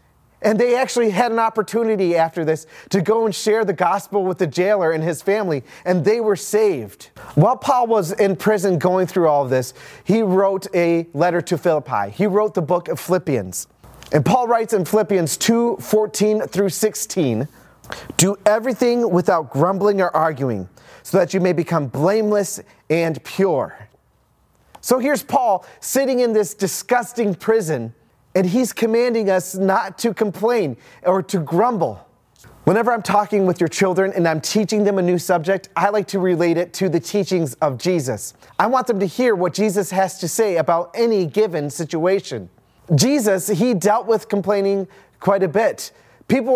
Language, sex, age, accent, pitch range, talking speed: English, male, 30-49, American, 170-215 Hz, 170 wpm